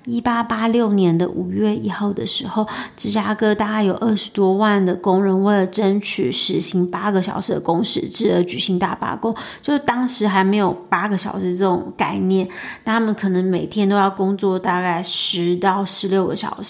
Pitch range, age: 190-230 Hz, 30-49